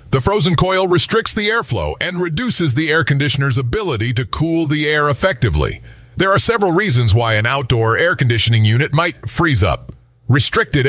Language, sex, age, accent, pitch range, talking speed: English, male, 50-69, American, 115-160 Hz, 170 wpm